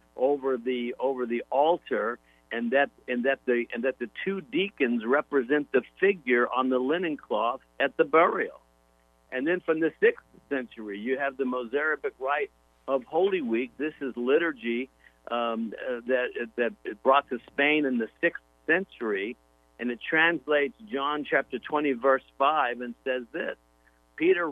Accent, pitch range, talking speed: American, 115-150 Hz, 160 wpm